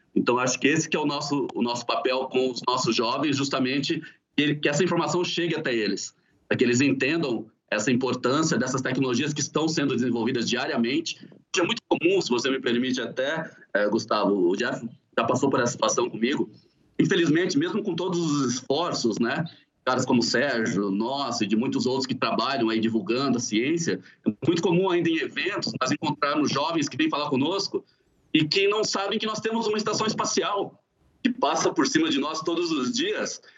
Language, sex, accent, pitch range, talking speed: Portuguese, male, Brazilian, 130-210 Hz, 195 wpm